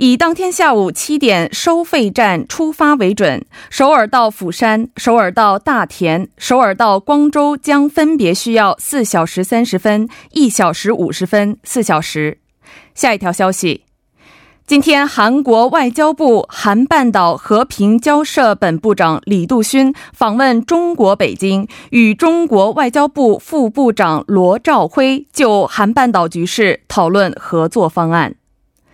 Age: 20-39